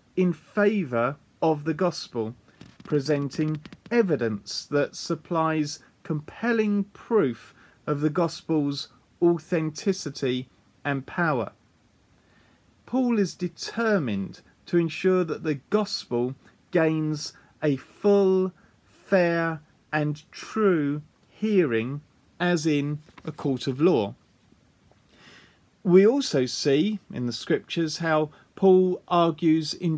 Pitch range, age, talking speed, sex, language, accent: 135-180 Hz, 40-59, 95 wpm, male, English, British